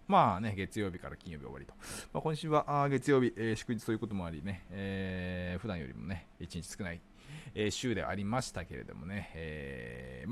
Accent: native